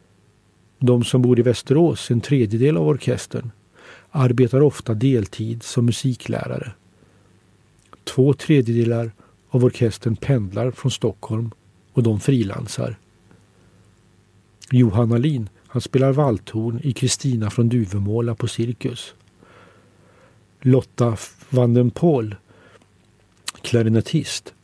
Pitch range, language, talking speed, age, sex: 105-140 Hz, Swedish, 95 wpm, 50-69, male